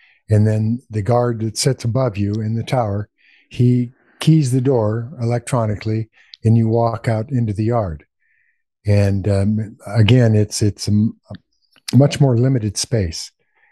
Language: English